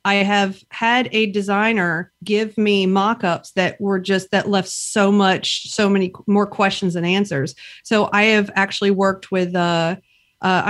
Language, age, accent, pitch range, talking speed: English, 40-59, American, 170-200 Hz, 155 wpm